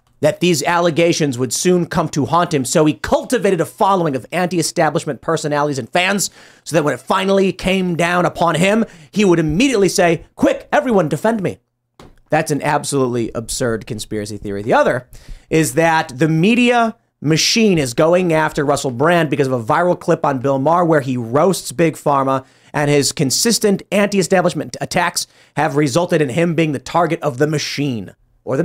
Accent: American